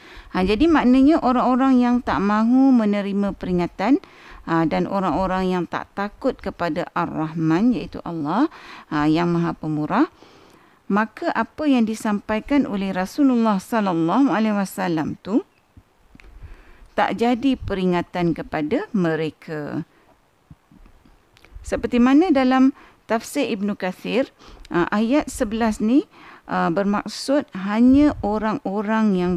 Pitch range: 170-245 Hz